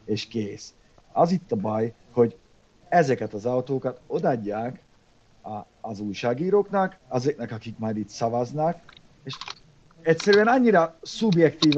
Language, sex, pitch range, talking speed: Hungarian, male, 135-180 Hz, 115 wpm